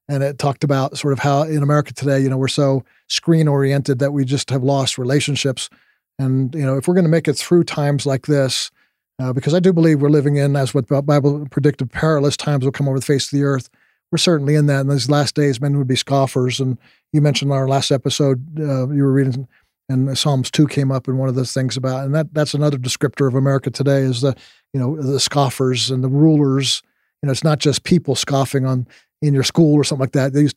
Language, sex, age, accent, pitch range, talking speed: English, male, 40-59, American, 135-150 Hz, 245 wpm